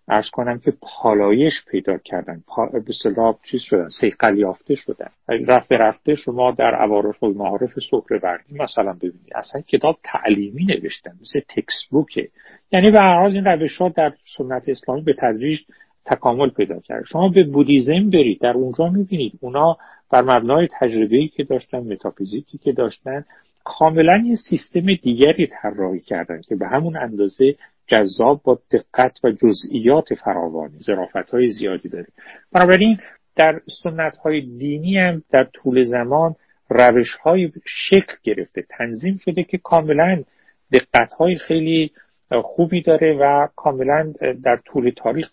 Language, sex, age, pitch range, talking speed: Persian, male, 50-69, 125-175 Hz, 140 wpm